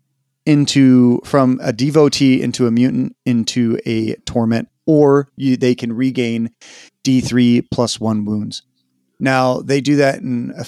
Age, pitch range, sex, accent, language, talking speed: 30-49, 120-140 Hz, male, American, English, 140 wpm